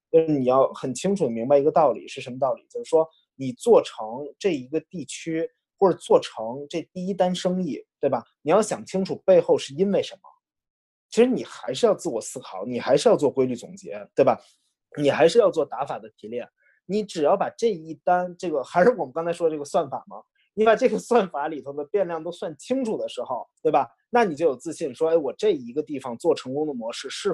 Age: 20-39